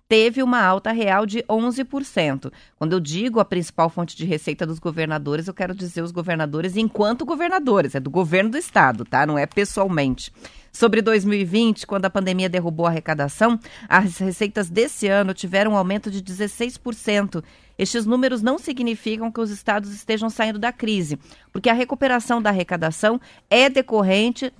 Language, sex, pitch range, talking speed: Portuguese, female, 170-225 Hz, 165 wpm